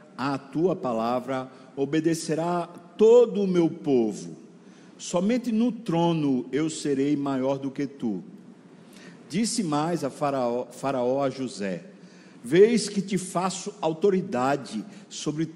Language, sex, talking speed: Portuguese, male, 115 wpm